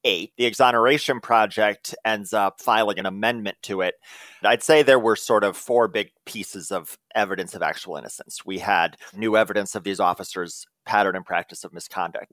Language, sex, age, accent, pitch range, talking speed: English, male, 30-49, American, 95-115 Hz, 180 wpm